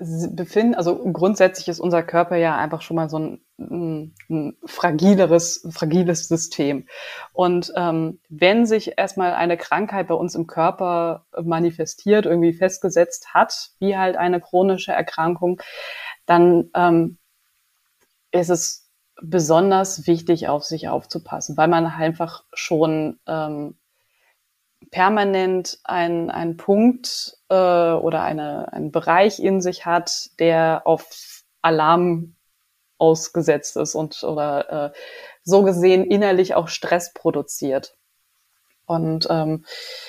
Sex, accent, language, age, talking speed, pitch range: female, German, German, 20-39, 120 wpm, 165-190 Hz